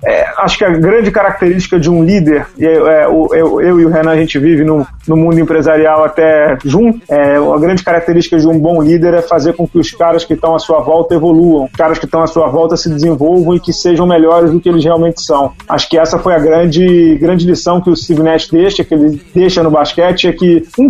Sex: male